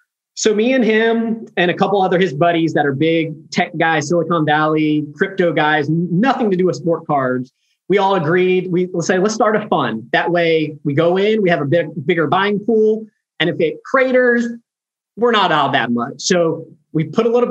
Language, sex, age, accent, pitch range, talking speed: English, male, 30-49, American, 145-180 Hz, 210 wpm